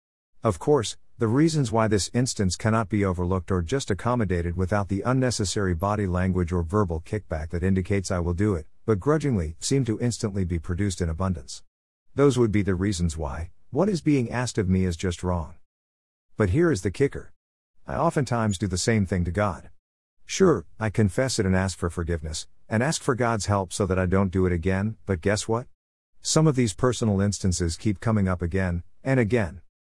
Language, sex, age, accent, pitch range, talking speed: English, male, 50-69, American, 90-120 Hz, 195 wpm